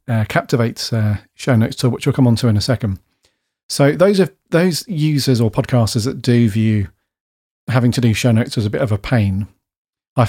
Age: 40-59